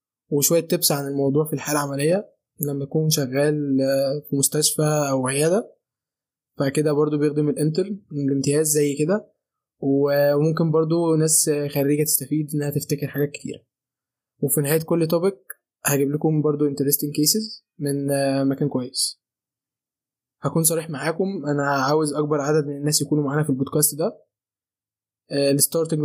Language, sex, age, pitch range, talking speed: Arabic, male, 20-39, 140-160 Hz, 130 wpm